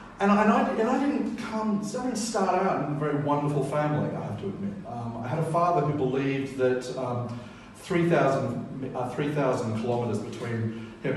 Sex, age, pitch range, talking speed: male, 40-59, 120-155 Hz, 170 wpm